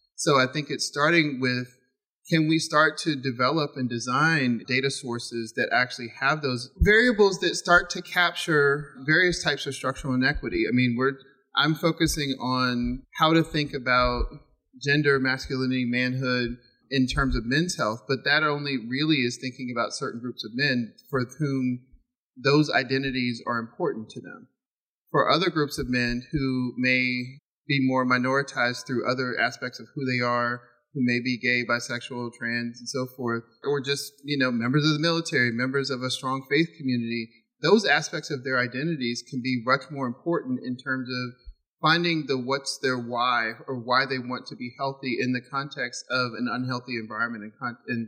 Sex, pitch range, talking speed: male, 125-145 Hz, 175 wpm